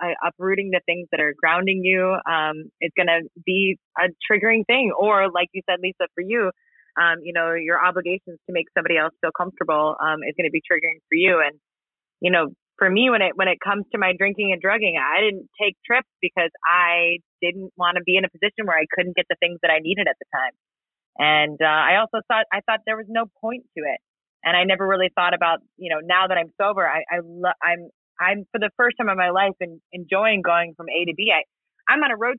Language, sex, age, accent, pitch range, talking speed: English, female, 20-39, American, 170-225 Hz, 240 wpm